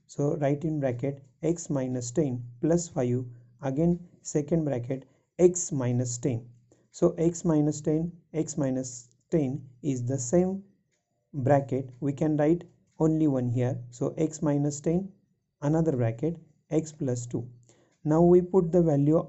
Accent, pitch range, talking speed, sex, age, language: native, 125-160 Hz, 145 wpm, male, 50-69, Marathi